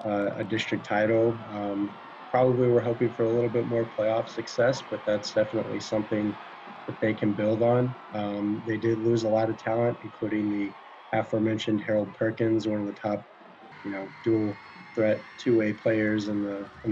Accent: American